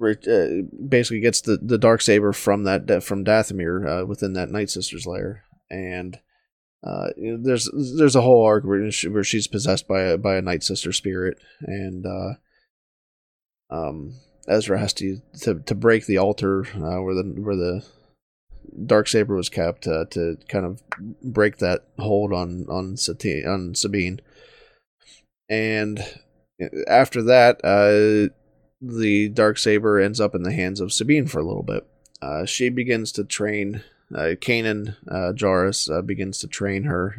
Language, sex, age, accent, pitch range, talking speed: English, male, 20-39, American, 95-110 Hz, 165 wpm